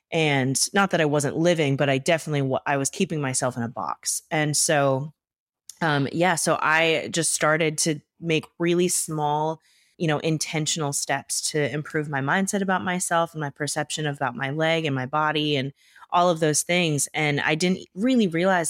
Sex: female